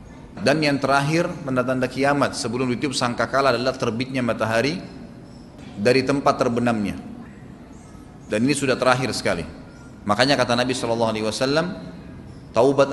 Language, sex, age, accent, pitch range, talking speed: Indonesian, male, 30-49, native, 125-155 Hz, 110 wpm